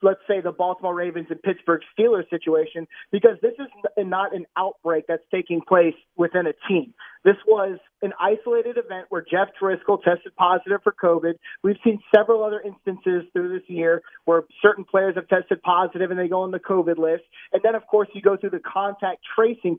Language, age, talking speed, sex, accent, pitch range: English, 30-49, 195 wpm, male, American, 180-220 Hz